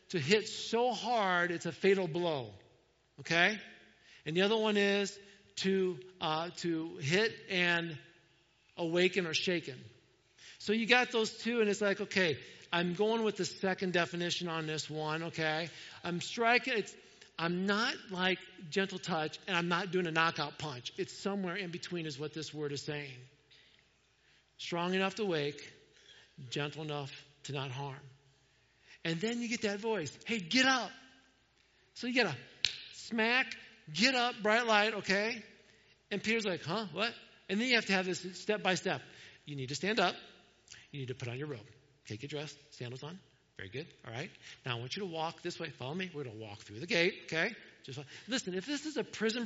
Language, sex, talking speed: English, male, 190 wpm